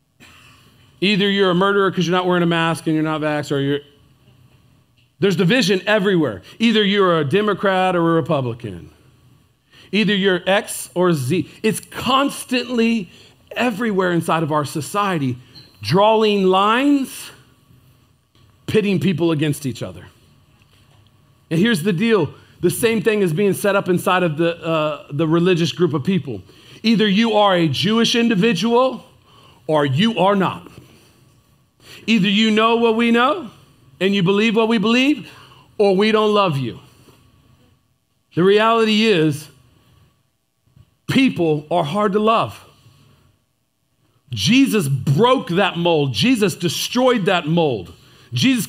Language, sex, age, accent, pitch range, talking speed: English, male, 40-59, American, 140-215 Hz, 135 wpm